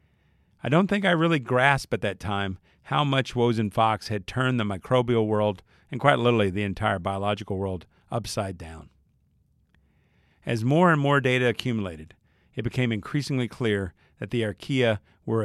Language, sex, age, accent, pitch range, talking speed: English, male, 50-69, American, 95-125 Hz, 160 wpm